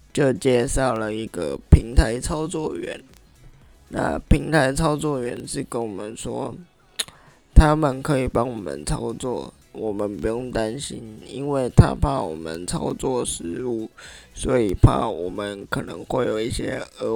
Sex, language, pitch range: male, Chinese, 110-135 Hz